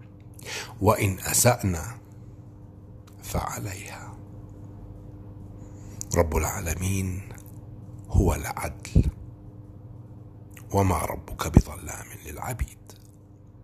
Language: Arabic